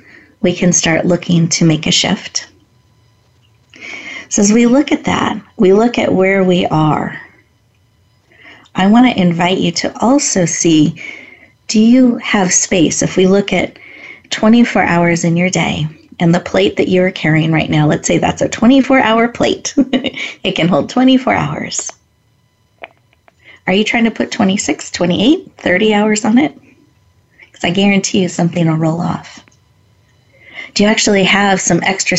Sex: female